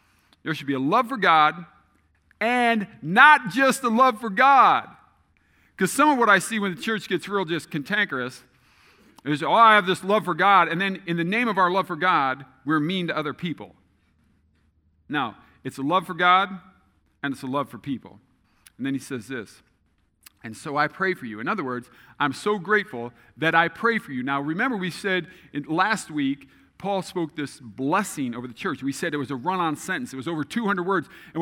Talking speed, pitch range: 210 wpm, 140-210 Hz